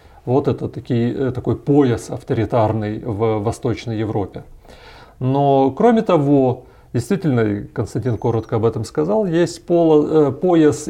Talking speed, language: 115 wpm, Russian